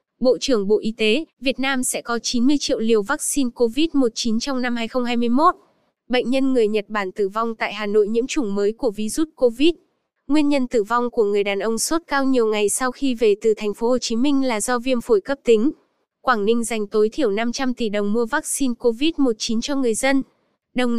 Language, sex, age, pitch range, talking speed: Vietnamese, female, 20-39, 225-275 Hz, 215 wpm